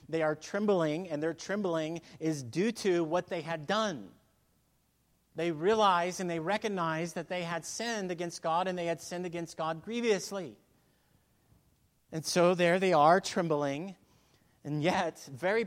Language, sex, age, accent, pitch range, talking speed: English, male, 30-49, American, 140-185 Hz, 155 wpm